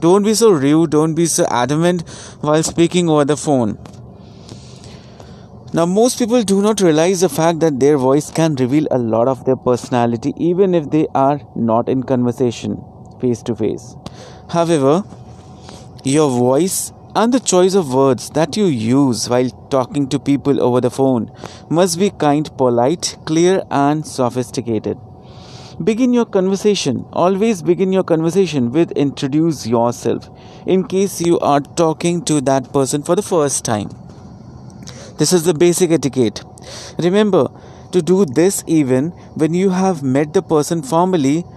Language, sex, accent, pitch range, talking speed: Hindi, male, native, 135-175 Hz, 150 wpm